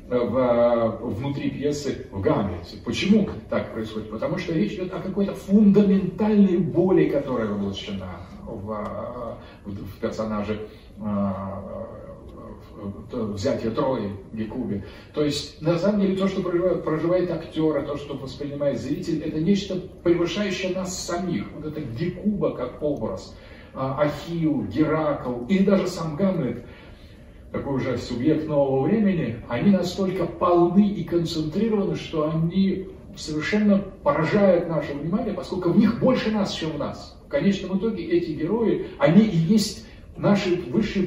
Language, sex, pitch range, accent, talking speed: Russian, male, 125-190 Hz, native, 125 wpm